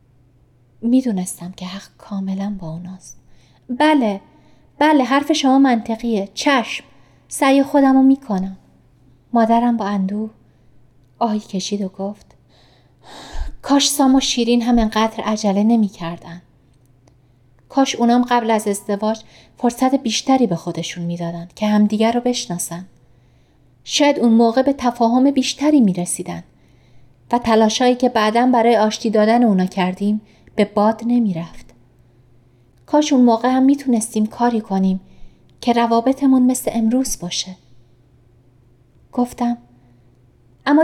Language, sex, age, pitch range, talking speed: Persian, female, 30-49, 170-255 Hz, 120 wpm